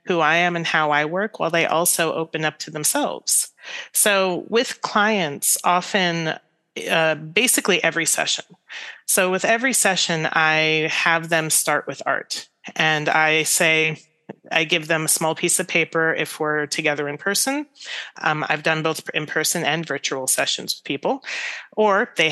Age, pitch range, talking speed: 30-49, 160-220 Hz, 165 wpm